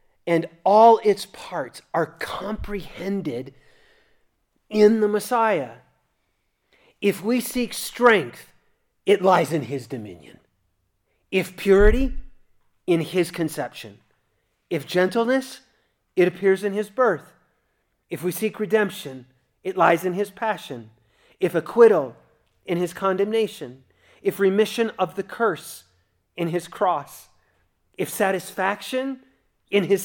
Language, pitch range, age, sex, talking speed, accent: English, 165-230 Hz, 30-49, male, 110 wpm, American